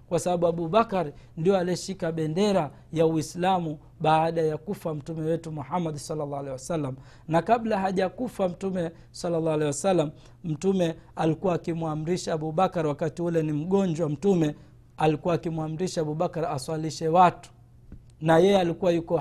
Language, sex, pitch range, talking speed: Swahili, male, 155-185 Hz, 135 wpm